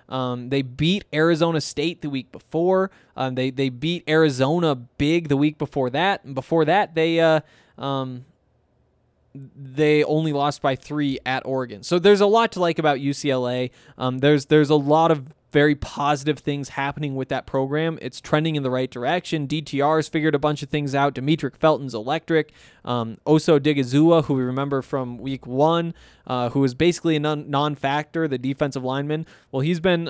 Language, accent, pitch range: English, American, 135-165 Hz